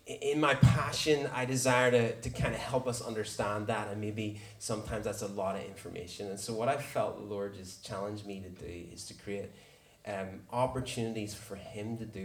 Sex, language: male, English